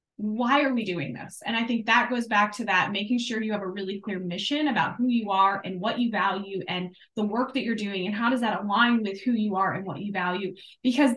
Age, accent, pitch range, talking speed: 20-39, American, 195-265 Hz, 265 wpm